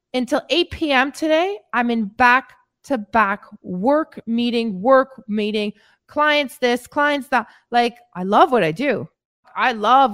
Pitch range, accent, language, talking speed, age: 200-255 Hz, American, English, 135 wpm, 20-39